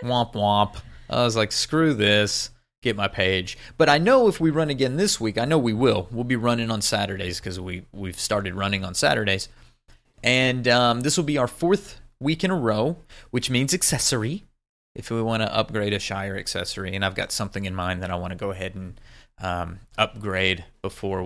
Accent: American